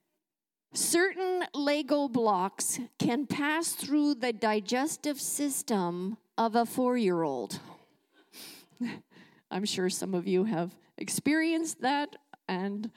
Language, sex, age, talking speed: English, female, 50-69, 95 wpm